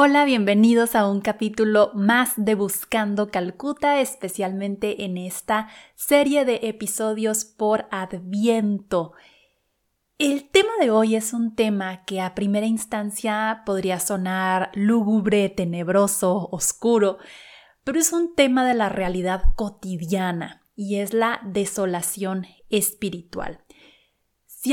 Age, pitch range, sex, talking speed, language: 30-49, 200-235 Hz, female, 115 wpm, Spanish